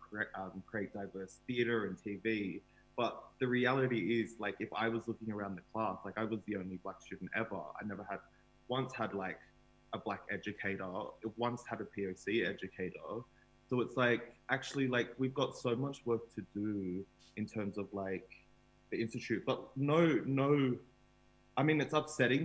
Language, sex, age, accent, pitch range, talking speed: English, male, 20-39, Australian, 100-130 Hz, 175 wpm